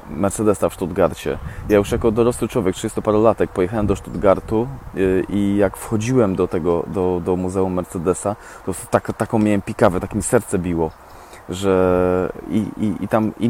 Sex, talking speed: male, 165 wpm